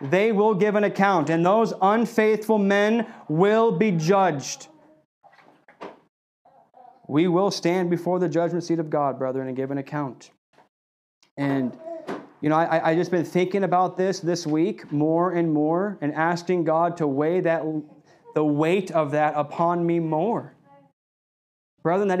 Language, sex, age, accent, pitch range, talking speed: English, male, 30-49, American, 145-195 Hz, 150 wpm